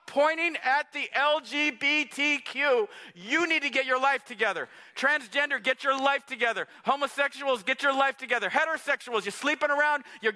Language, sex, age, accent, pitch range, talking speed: English, male, 40-59, American, 245-310 Hz, 150 wpm